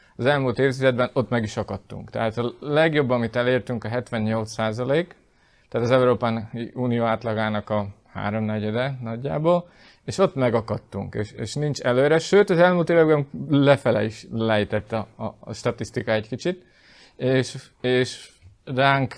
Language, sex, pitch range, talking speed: Hungarian, male, 110-135 Hz, 145 wpm